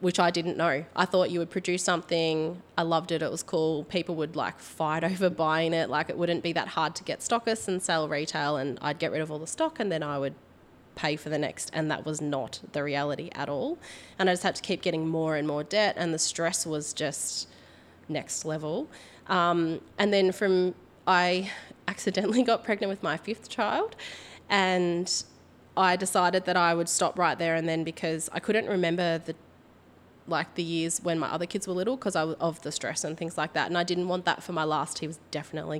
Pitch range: 155-180 Hz